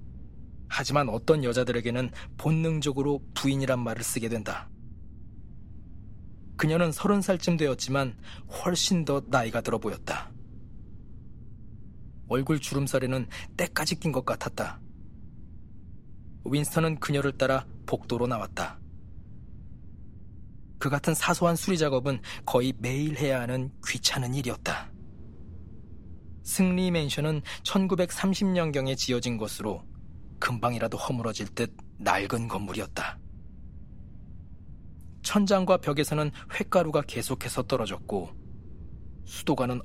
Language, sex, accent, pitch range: Korean, male, native, 105-150 Hz